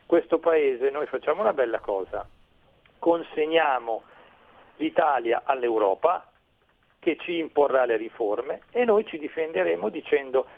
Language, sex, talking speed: Italian, male, 115 wpm